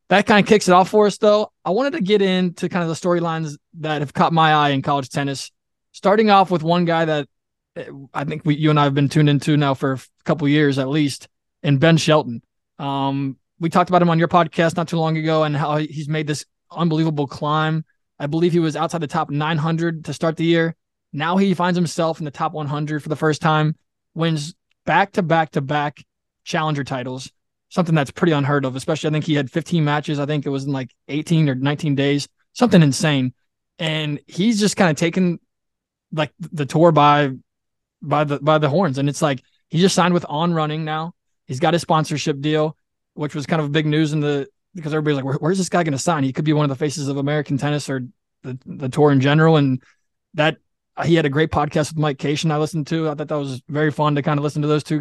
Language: English